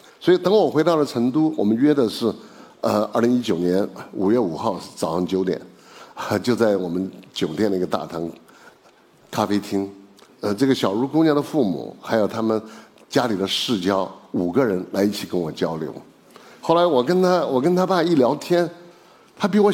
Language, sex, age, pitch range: Chinese, male, 60-79, 115-190 Hz